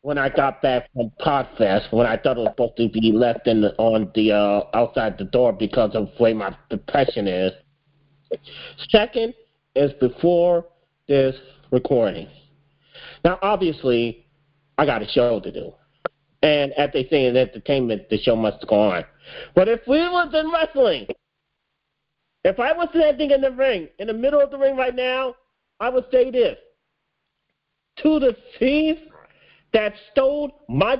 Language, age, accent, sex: English, 40-59, American, male